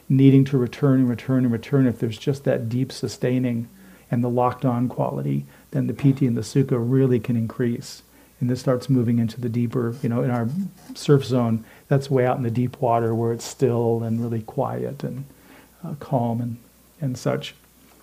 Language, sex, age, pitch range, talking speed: English, male, 40-59, 120-140 Hz, 195 wpm